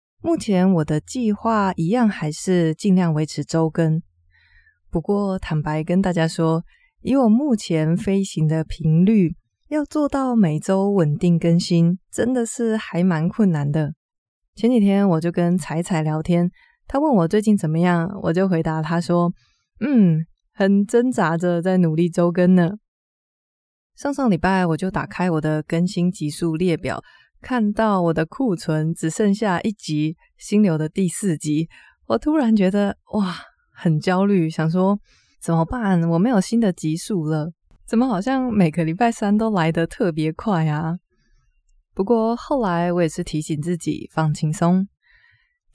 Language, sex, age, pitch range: Chinese, female, 20-39, 160-210 Hz